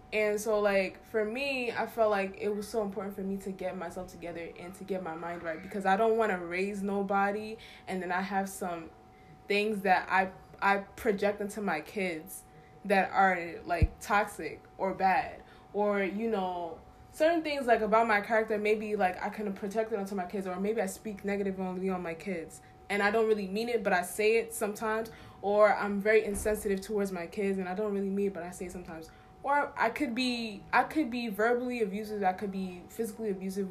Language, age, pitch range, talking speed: English, 20-39, 185-220 Hz, 215 wpm